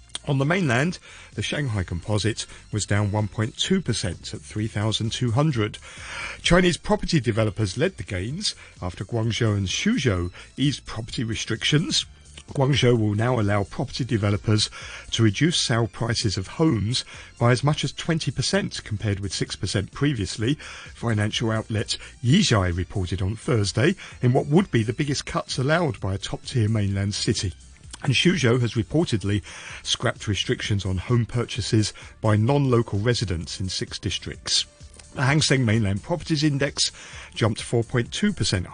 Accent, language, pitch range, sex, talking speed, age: British, English, 100-140 Hz, male, 135 wpm, 50-69